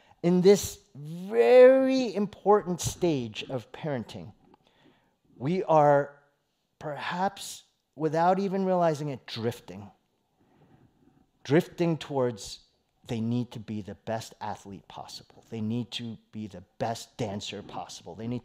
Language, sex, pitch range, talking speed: English, male, 115-180 Hz, 115 wpm